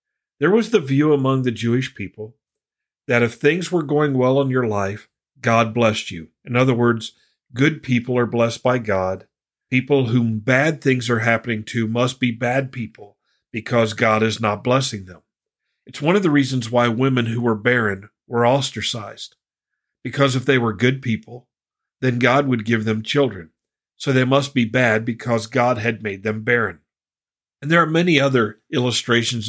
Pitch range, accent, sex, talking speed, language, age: 115-135 Hz, American, male, 175 wpm, English, 50-69